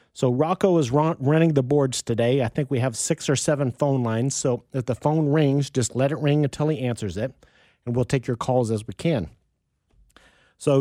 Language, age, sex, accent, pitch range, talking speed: English, 40-59, male, American, 120-150 Hz, 210 wpm